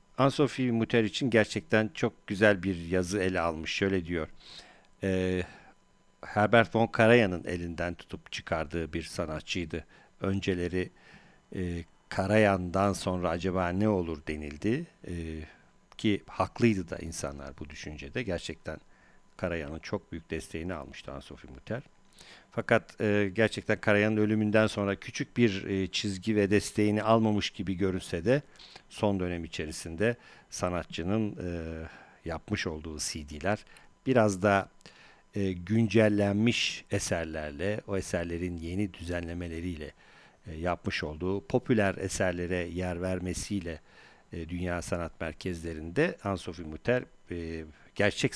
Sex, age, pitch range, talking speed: male, 50-69, 85-105 Hz, 110 wpm